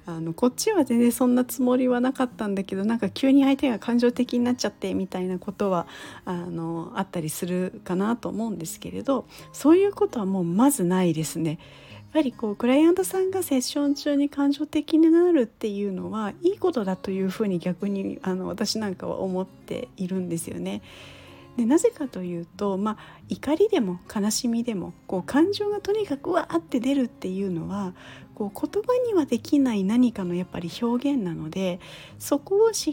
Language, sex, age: Japanese, female, 40-59